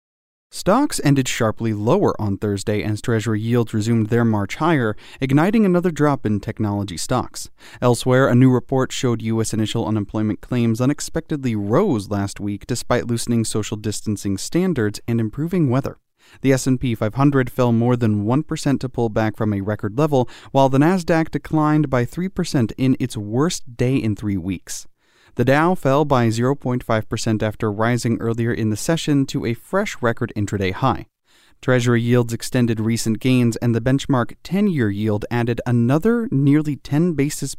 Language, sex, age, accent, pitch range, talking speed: English, male, 30-49, American, 110-145 Hz, 160 wpm